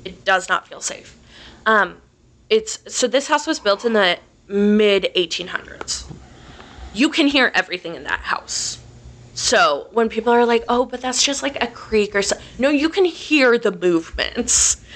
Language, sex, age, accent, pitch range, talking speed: English, female, 20-39, American, 190-250 Hz, 170 wpm